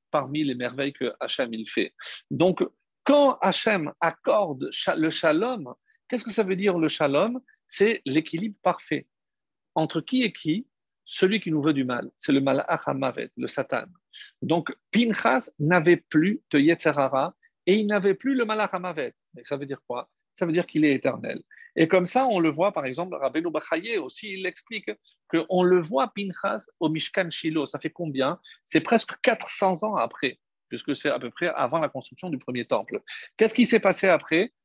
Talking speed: 180 wpm